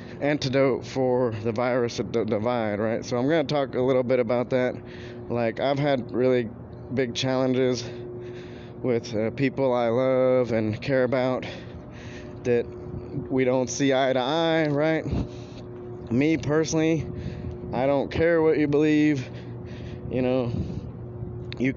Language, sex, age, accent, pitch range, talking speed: English, male, 20-39, American, 115-130 Hz, 140 wpm